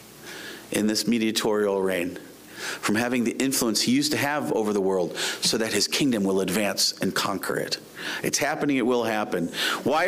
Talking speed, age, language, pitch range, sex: 180 wpm, 40-59, English, 140-210 Hz, male